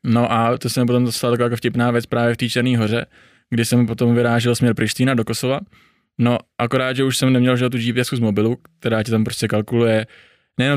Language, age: Czech, 20-39